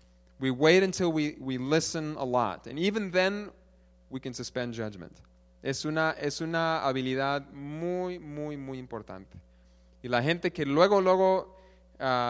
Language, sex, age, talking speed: English, male, 30-49, 150 wpm